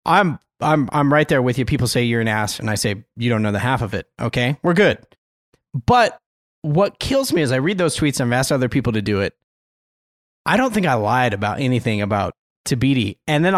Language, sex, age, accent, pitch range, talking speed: English, male, 30-49, American, 110-165 Hz, 230 wpm